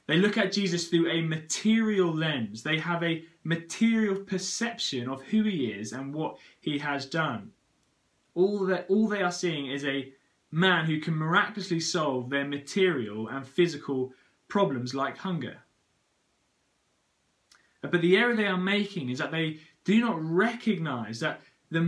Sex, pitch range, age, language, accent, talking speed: male, 145-205 Hz, 20-39, English, British, 150 wpm